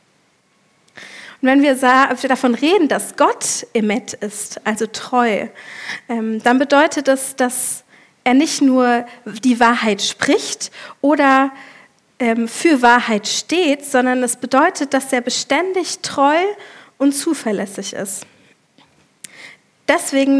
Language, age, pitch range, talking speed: German, 40-59, 235-285 Hz, 105 wpm